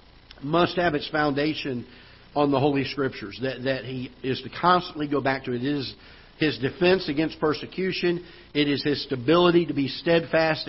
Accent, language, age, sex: American, English, 50-69, male